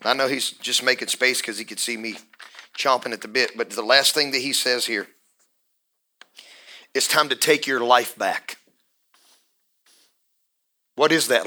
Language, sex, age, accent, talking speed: English, male, 40-59, American, 175 wpm